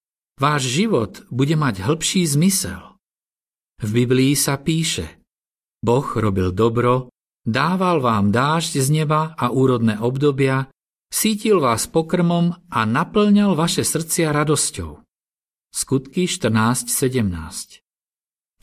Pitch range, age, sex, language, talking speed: 115-160 Hz, 50-69, male, Slovak, 100 wpm